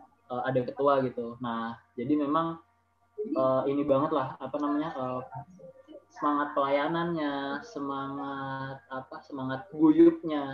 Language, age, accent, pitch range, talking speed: Indonesian, 20-39, native, 135-160 Hz, 110 wpm